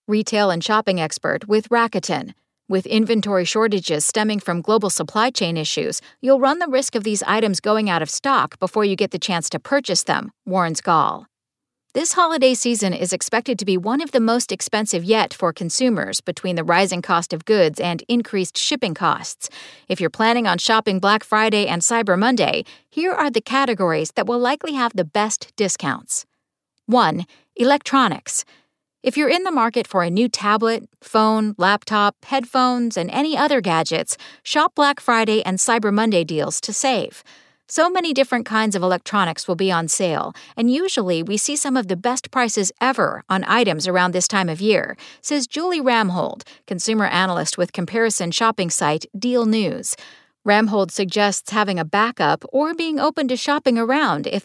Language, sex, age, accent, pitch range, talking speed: English, female, 50-69, American, 185-250 Hz, 175 wpm